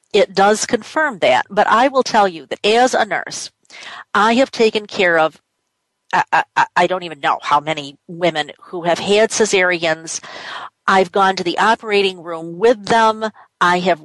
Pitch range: 175-225 Hz